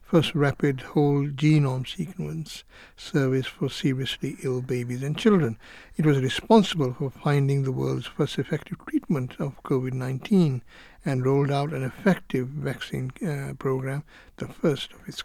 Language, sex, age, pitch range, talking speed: English, male, 60-79, 130-150 Hz, 140 wpm